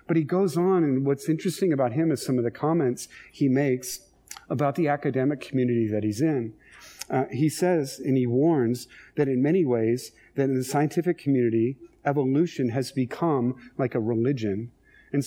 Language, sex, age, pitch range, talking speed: English, male, 40-59, 125-150 Hz, 175 wpm